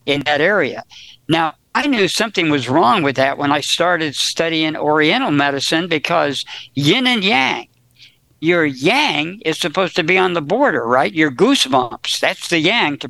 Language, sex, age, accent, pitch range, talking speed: English, male, 60-79, American, 140-175 Hz, 170 wpm